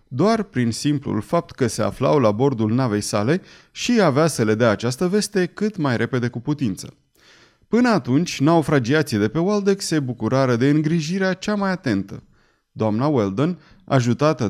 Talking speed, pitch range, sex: 160 wpm, 115-165 Hz, male